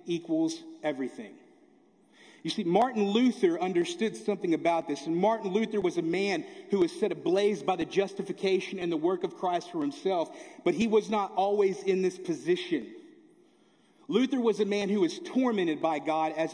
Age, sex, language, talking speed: 40-59, male, English, 175 wpm